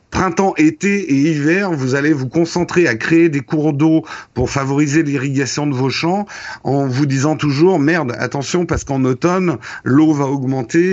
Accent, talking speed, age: French, 170 wpm, 50-69